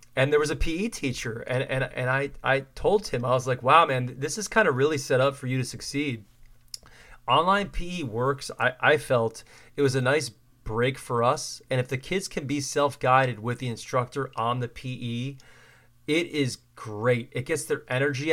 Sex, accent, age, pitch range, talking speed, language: male, American, 30-49, 120-140 Hz, 205 wpm, English